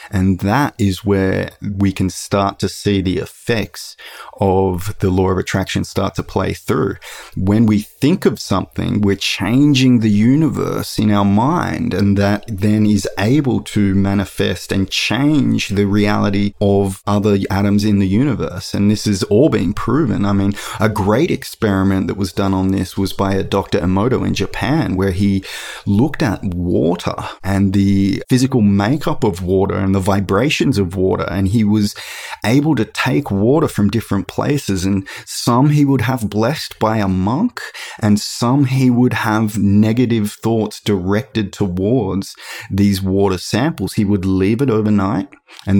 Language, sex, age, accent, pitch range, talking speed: English, male, 20-39, Australian, 95-110 Hz, 165 wpm